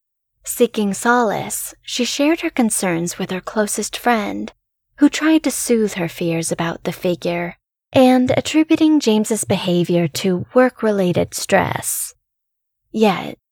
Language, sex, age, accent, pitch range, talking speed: English, female, 20-39, American, 175-245 Hz, 120 wpm